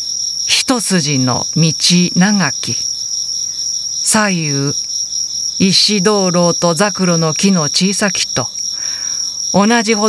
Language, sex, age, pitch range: Japanese, female, 50-69, 145-200 Hz